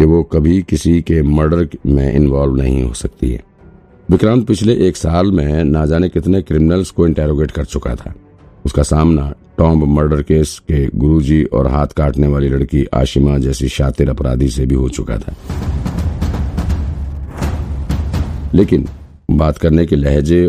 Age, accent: 50-69, native